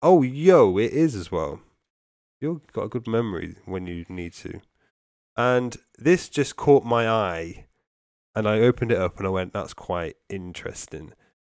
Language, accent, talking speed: English, British, 170 wpm